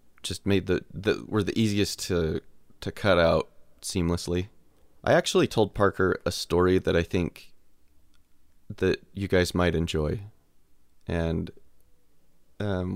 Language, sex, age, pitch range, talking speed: English, male, 30-49, 85-105 Hz, 130 wpm